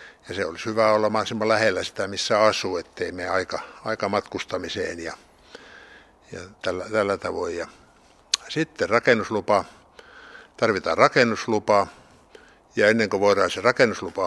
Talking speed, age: 130 wpm, 60-79